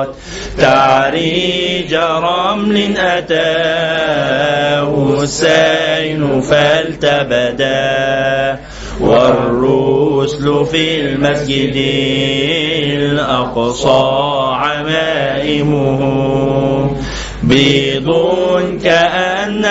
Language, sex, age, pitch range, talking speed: Arabic, male, 30-49, 135-160 Hz, 35 wpm